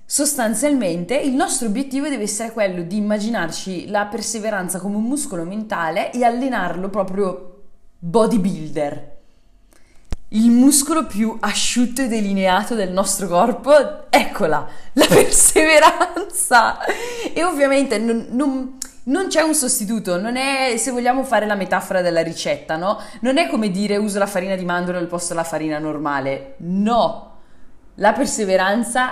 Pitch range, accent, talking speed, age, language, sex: 175-255 Hz, native, 135 wpm, 20-39, Italian, female